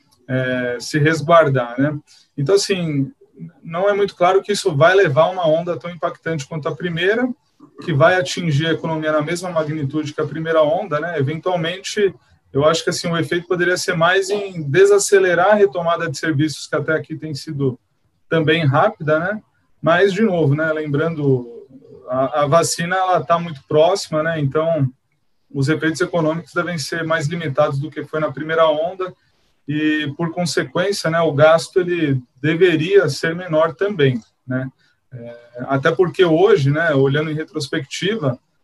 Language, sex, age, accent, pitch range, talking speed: Portuguese, male, 20-39, Brazilian, 145-175 Hz, 165 wpm